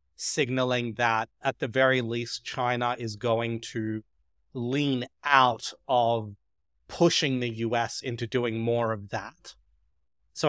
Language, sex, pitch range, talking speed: English, male, 115-135 Hz, 125 wpm